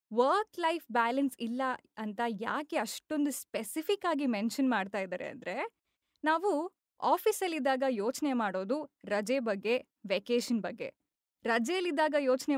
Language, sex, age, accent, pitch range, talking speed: Kannada, female, 20-39, native, 230-305 Hz, 110 wpm